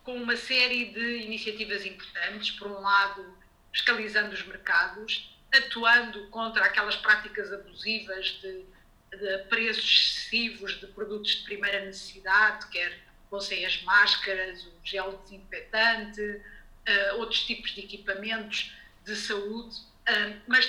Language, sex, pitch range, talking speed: Portuguese, female, 200-235 Hz, 120 wpm